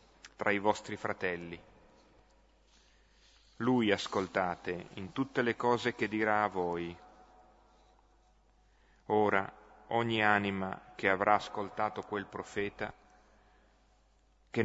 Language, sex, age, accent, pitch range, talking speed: Italian, male, 40-59, native, 100-110 Hz, 95 wpm